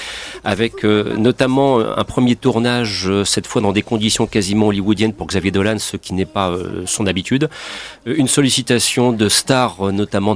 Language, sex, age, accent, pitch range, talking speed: French, male, 40-59, French, 100-130 Hz, 160 wpm